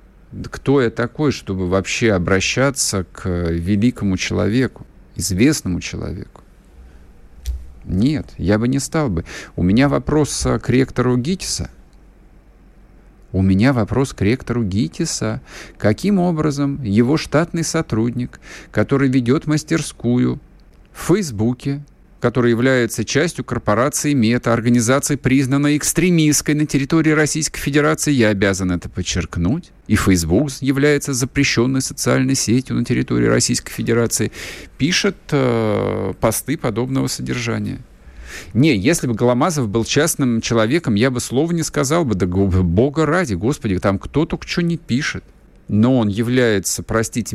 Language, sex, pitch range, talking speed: Russian, male, 95-140 Hz, 120 wpm